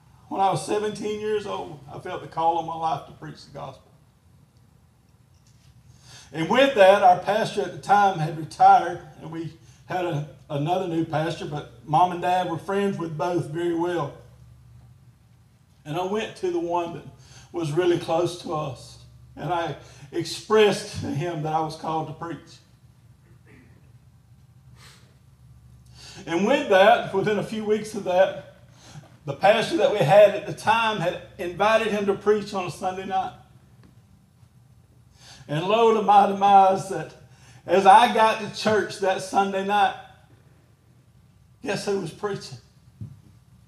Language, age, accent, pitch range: English, 40-59, American, 130-200 Hz